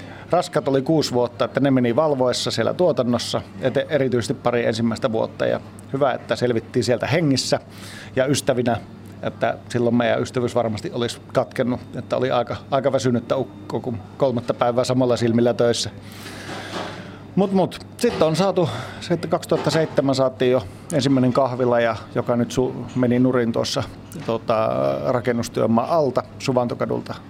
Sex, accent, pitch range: male, native, 115-135 Hz